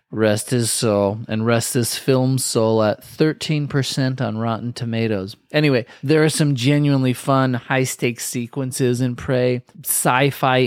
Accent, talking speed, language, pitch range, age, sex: American, 135 wpm, English, 115-135 Hz, 30-49, male